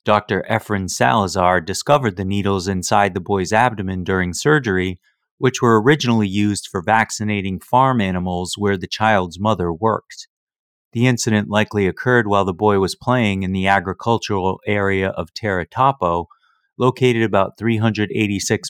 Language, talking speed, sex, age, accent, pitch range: English, 140 wpm, male, 30-49, American, 95-115 Hz